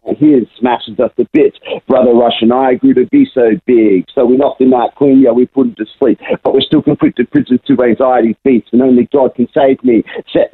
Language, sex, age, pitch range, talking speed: English, male, 50-69, 125-150 Hz, 240 wpm